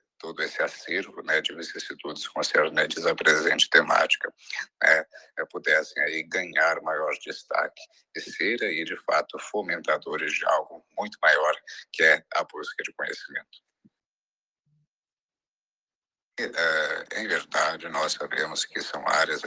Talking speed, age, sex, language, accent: 130 wpm, 60-79, male, Portuguese, Brazilian